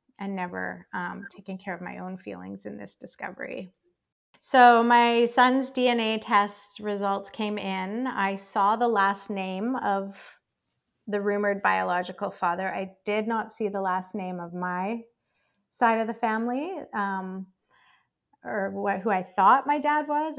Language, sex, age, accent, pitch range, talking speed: English, female, 30-49, American, 195-230 Hz, 155 wpm